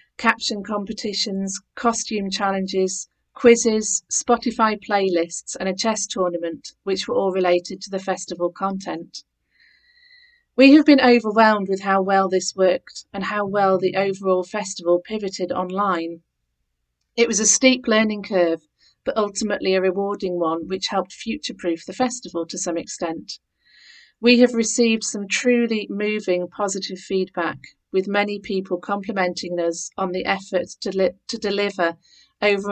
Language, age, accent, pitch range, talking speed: English, 40-59, British, 180-215 Hz, 140 wpm